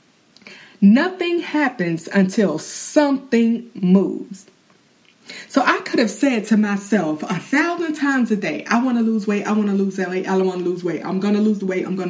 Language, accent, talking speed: English, American, 210 wpm